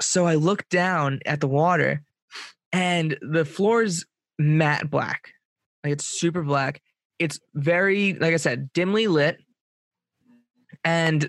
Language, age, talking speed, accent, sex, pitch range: English, 20-39, 135 wpm, American, male, 150-190 Hz